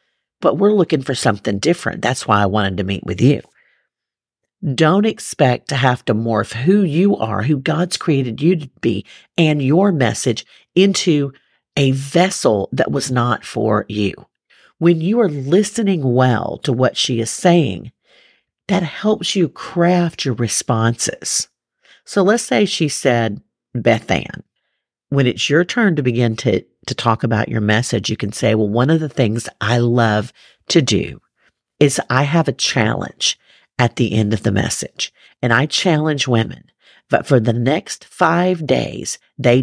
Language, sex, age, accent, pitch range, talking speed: English, female, 50-69, American, 115-165 Hz, 165 wpm